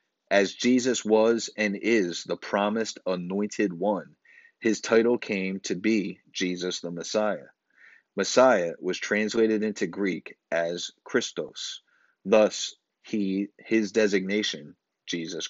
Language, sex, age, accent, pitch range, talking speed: English, male, 30-49, American, 95-110 Hz, 110 wpm